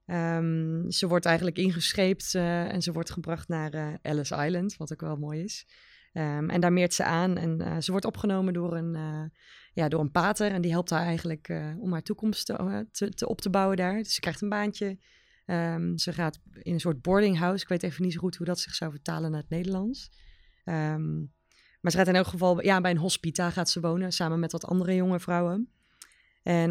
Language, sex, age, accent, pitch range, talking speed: Dutch, female, 20-39, Dutch, 165-195 Hz, 225 wpm